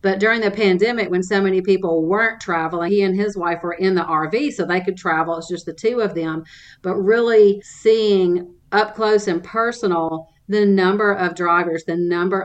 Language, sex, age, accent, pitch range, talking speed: English, female, 40-59, American, 175-210 Hz, 200 wpm